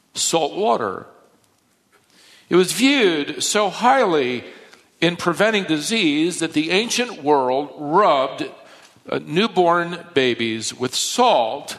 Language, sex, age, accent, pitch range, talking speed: English, male, 50-69, American, 120-155 Hz, 95 wpm